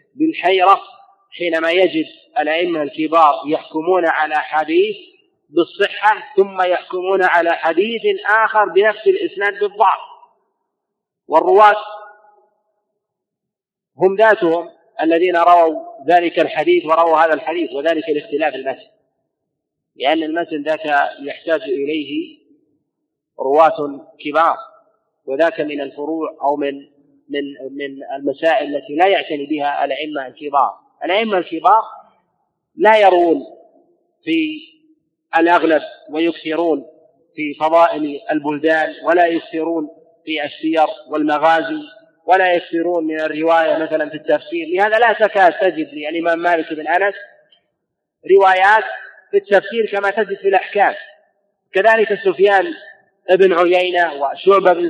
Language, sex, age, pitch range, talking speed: Arabic, male, 50-69, 160-215 Hz, 105 wpm